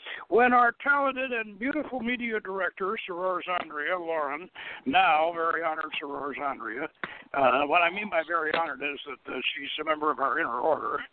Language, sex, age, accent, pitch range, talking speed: English, male, 60-79, American, 180-240 Hz, 175 wpm